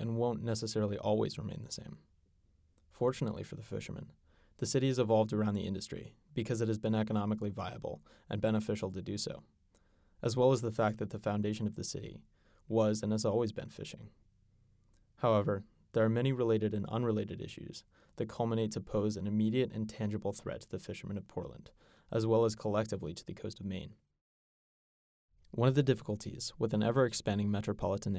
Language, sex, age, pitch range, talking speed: English, male, 20-39, 100-115 Hz, 180 wpm